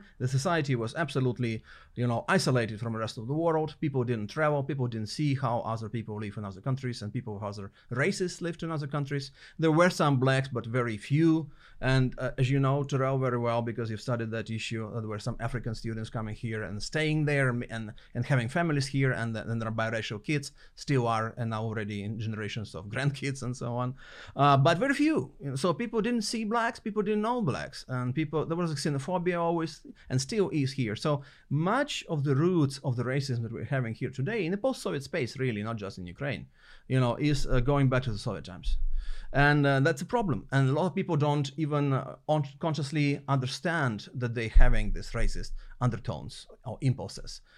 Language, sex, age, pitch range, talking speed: English, male, 30-49, 115-150 Hz, 215 wpm